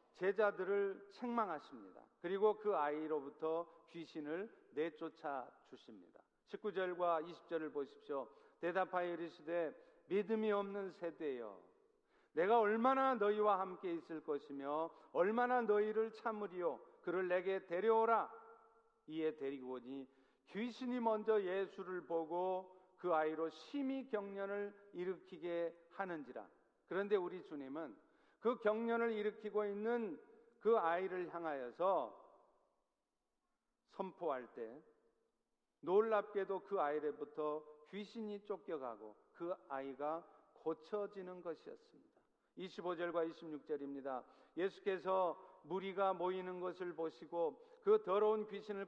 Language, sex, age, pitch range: Korean, male, 50-69, 165-220 Hz